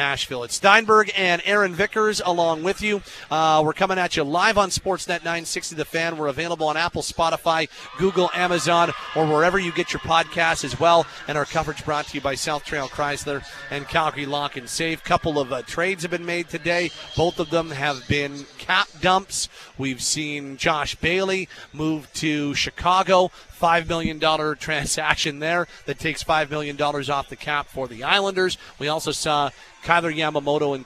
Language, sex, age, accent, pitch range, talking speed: English, male, 40-59, American, 140-170 Hz, 185 wpm